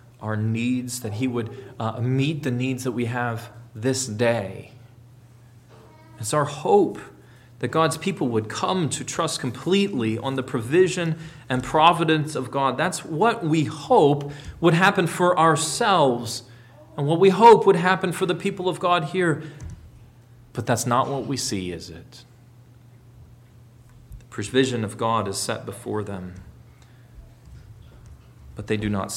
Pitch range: 120-160 Hz